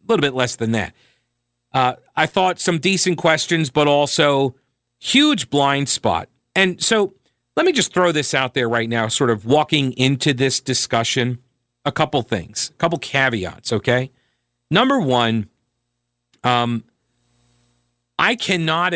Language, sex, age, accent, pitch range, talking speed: English, male, 40-59, American, 120-150 Hz, 140 wpm